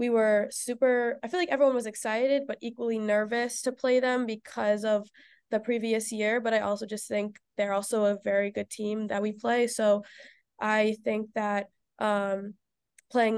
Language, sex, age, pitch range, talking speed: English, female, 20-39, 210-245 Hz, 180 wpm